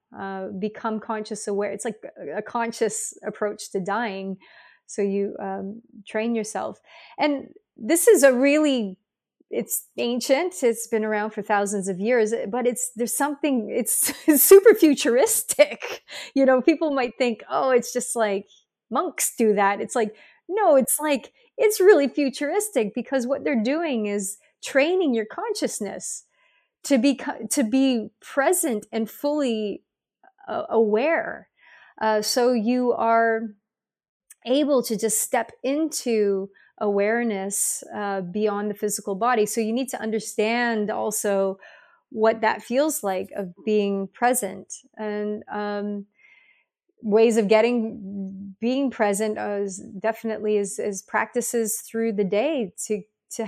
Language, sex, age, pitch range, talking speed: English, female, 30-49, 210-260 Hz, 140 wpm